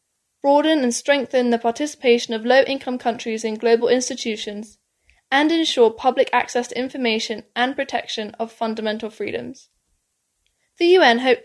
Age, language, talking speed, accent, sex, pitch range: 10-29, English, 130 wpm, British, female, 230-275 Hz